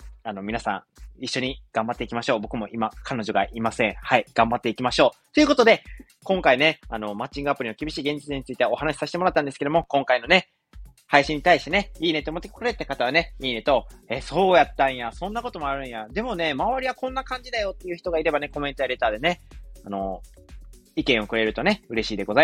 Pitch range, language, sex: 130-195 Hz, Japanese, male